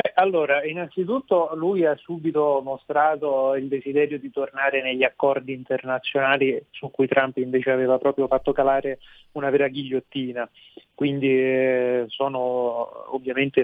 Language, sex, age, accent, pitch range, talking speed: Italian, male, 20-39, native, 125-145 Hz, 125 wpm